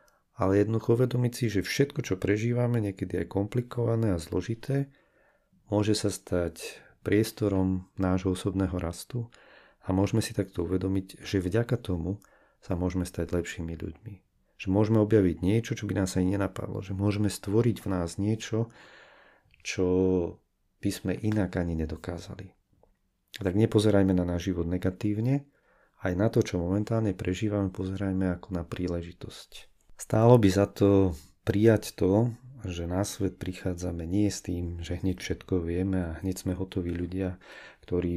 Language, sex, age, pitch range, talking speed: Slovak, male, 40-59, 90-105 Hz, 145 wpm